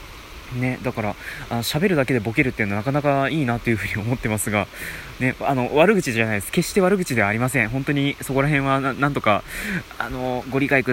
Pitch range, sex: 110-145 Hz, male